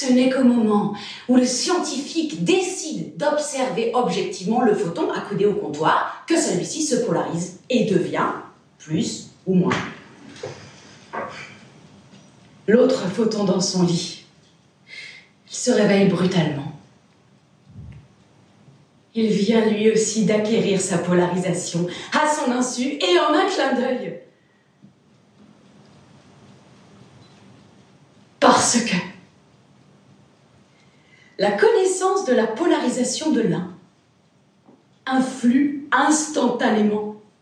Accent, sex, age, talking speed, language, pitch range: French, female, 30-49, 95 wpm, French, 195-270 Hz